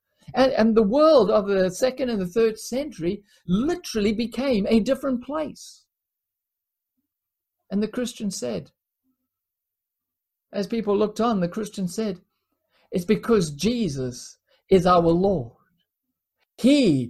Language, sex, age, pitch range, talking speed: English, male, 50-69, 180-255 Hz, 120 wpm